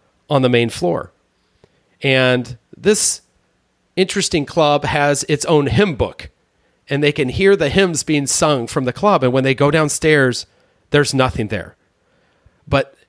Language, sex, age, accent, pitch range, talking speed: English, male, 40-59, American, 120-155 Hz, 150 wpm